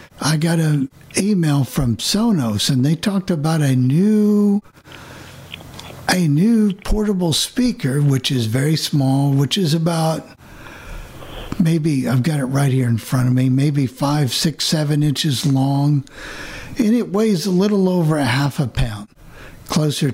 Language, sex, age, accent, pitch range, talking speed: English, male, 60-79, American, 135-170 Hz, 150 wpm